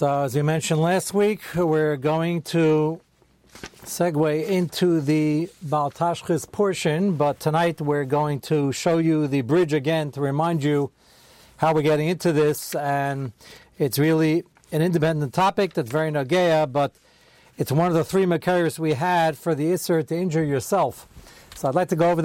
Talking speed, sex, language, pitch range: 165 wpm, male, English, 145-170 Hz